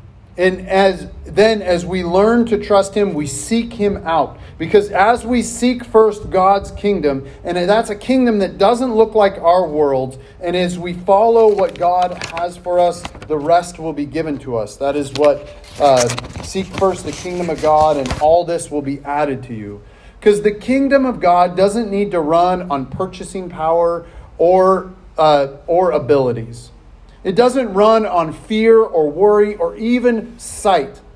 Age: 40-59